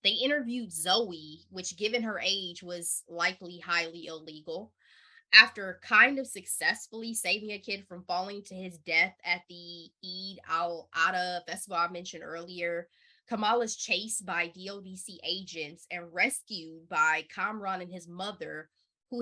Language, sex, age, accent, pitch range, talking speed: English, female, 20-39, American, 170-215 Hz, 140 wpm